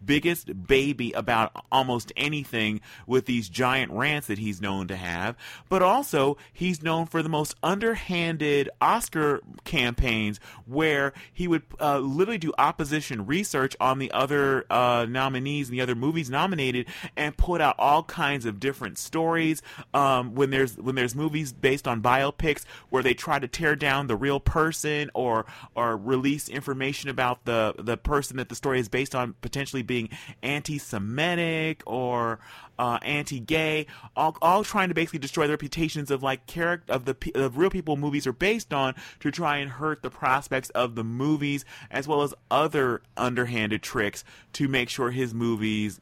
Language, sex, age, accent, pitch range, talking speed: English, male, 30-49, American, 120-150 Hz, 170 wpm